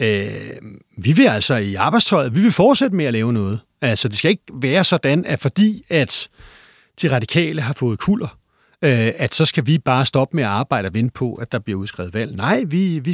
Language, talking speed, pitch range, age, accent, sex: Danish, 210 wpm, 115-165 Hz, 40-59, native, male